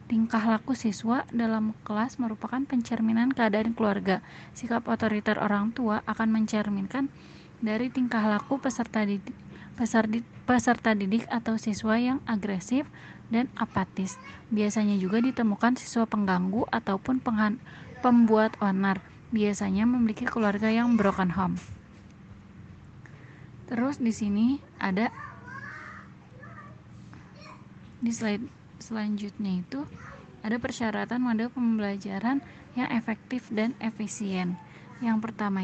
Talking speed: 105 wpm